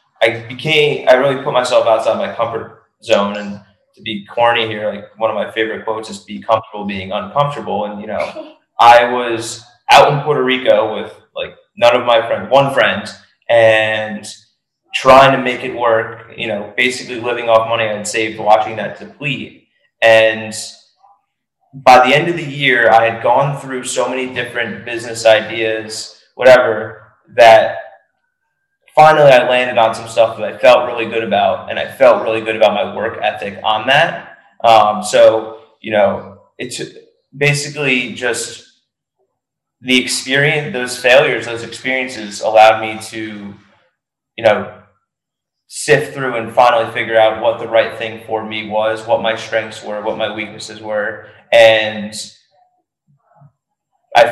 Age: 20-39